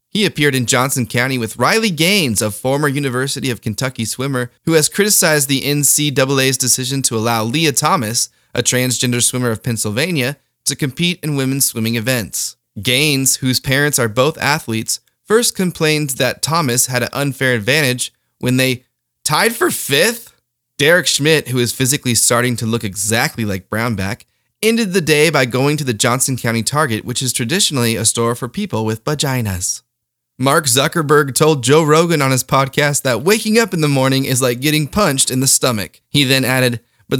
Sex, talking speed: male, 175 wpm